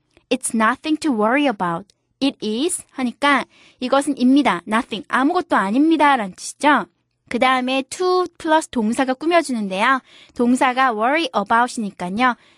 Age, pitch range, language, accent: 20-39, 210-285 Hz, Korean, native